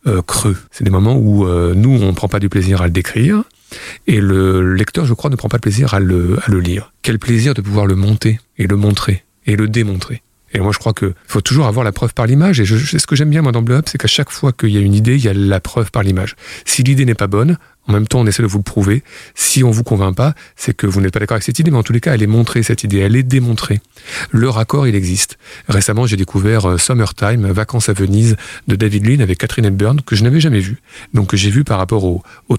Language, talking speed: French, 280 wpm